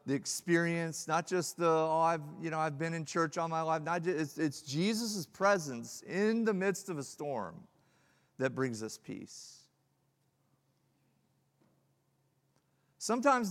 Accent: American